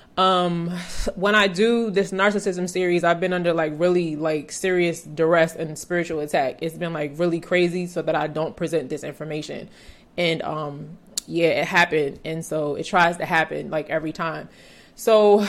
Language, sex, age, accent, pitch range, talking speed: English, female, 20-39, American, 165-190 Hz, 175 wpm